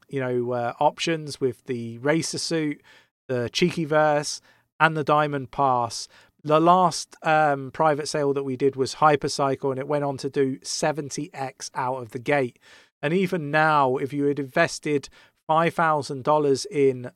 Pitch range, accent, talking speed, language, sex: 130-155 Hz, British, 155 wpm, English, male